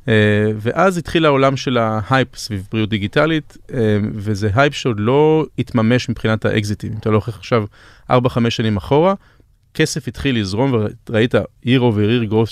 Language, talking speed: Hebrew, 145 wpm